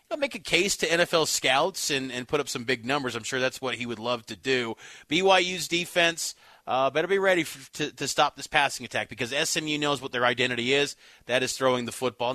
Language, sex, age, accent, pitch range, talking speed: English, male, 30-49, American, 125-150 Hz, 235 wpm